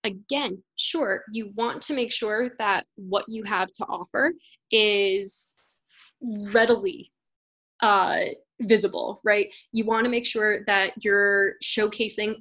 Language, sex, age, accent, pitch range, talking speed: English, female, 10-29, American, 200-235 Hz, 120 wpm